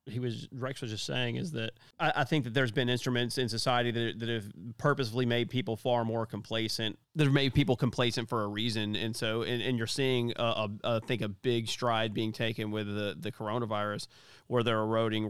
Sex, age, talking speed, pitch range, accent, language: male, 30-49, 215 wpm, 110-125 Hz, American, English